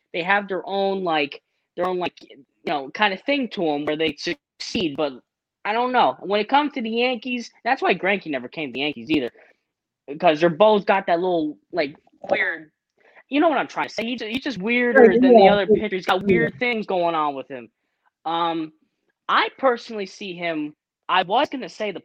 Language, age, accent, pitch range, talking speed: English, 20-39, American, 150-205 Hz, 215 wpm